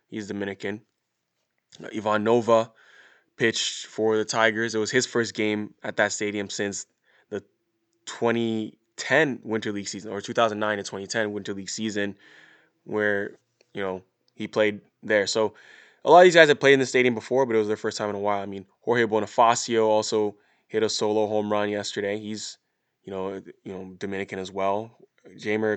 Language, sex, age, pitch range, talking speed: English, male, 20-39, 100-115 Hz, 175 wpm